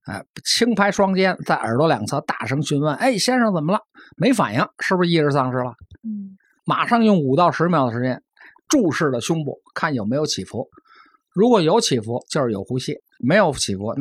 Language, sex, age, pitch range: Chinese, male, 50-69, 115-165 Hz